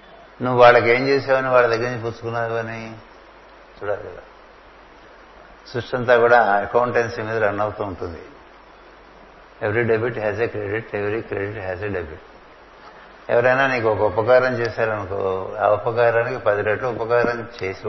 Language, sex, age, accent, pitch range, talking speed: Telugu, male, 60-79, native, 100-120 Hz, 135 wpm